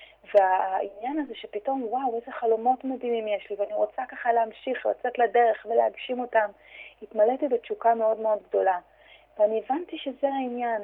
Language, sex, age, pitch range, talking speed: Hebrew, female, 30-49, 200-235 Hz, 145 wpm